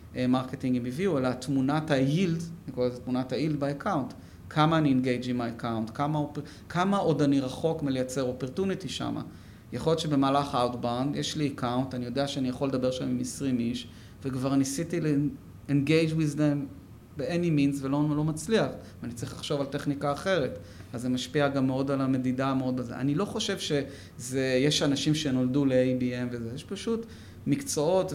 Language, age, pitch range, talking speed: Hebrew, 30-49, 125-155 Hz, 155 wpm